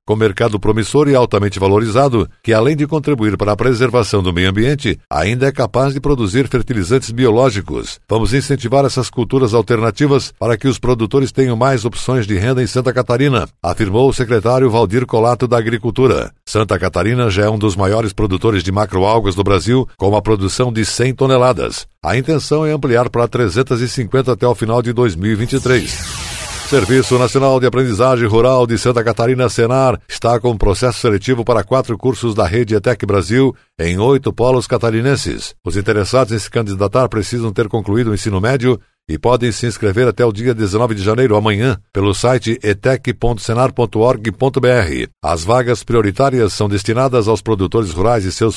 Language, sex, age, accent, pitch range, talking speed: Portuguese, male, 60-79, Brazilian, 110-130 Hz, 165 wpm